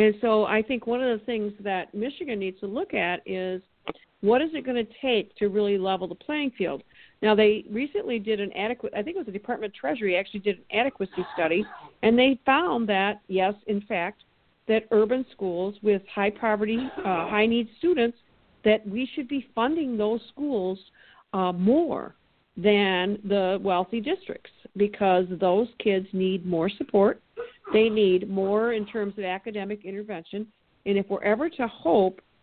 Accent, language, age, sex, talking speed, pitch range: American, English, 50-69, female, 175 wpm, 195-230 Hz